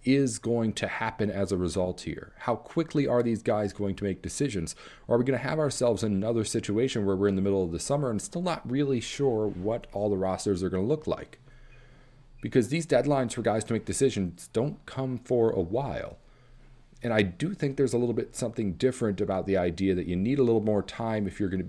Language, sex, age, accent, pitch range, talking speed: English, male, 40-59, American, 95-130 Hz, 225 wpm